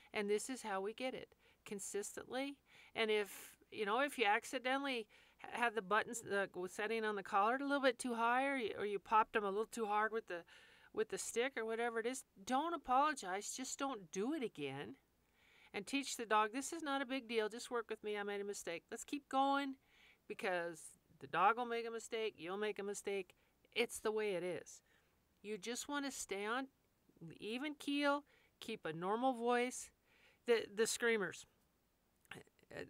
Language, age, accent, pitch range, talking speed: English, 50-69, American, 195-260 Hz, 190 wpm